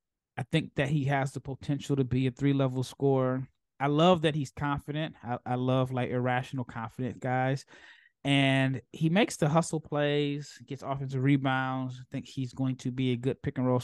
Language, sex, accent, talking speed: English, male, American, 180 wpm